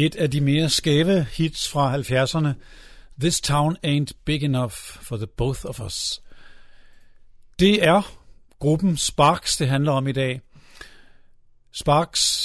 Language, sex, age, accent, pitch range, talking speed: Danish, male, 50-69, native, 125-155 Hz, 135 wpm